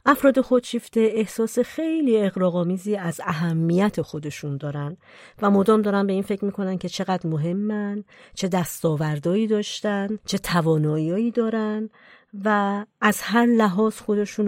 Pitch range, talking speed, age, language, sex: 160-210 Hz, 125 wpm, 40-59, Persian, female